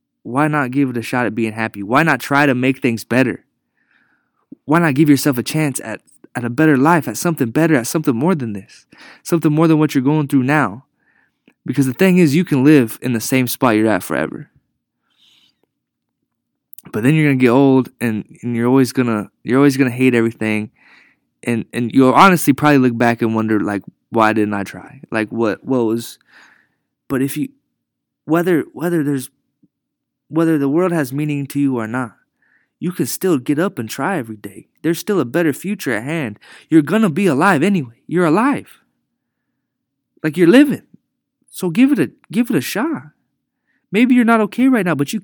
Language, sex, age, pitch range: English, male, 20-39, 125-180 Hz